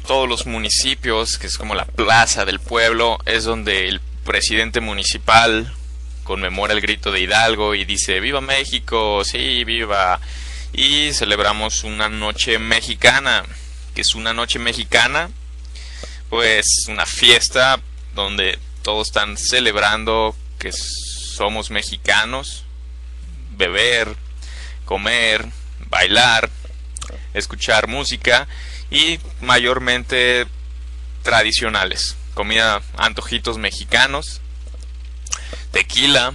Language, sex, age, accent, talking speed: English, male, 20-39, Mexican, 95 wpm